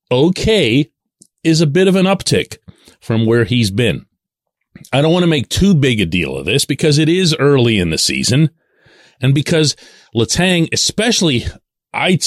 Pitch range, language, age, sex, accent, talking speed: 95-150 Hz, English, 40-59, male, American, 165 wpm